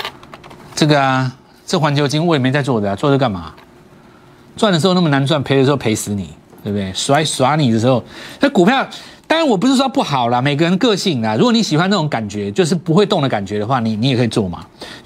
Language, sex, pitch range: Chinese, male, 115-185 Hz